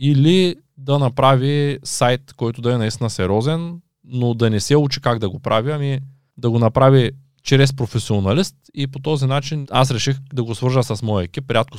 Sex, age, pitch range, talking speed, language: male, 20-39, 110-140 Hz, 195 wpm, Bulgarian